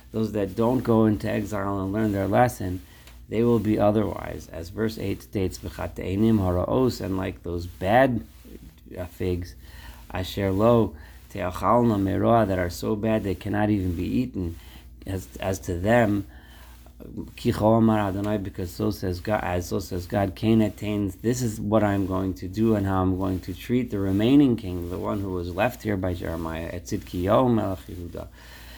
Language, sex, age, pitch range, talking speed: English, male, 50-69, 90-110 Hz, 155 wpm